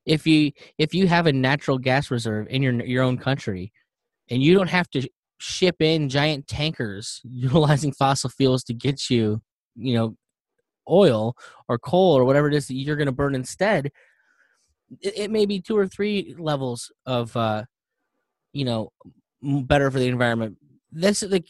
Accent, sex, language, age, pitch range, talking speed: American, male, English, 10-29, 120-165 Hz, 175 wpm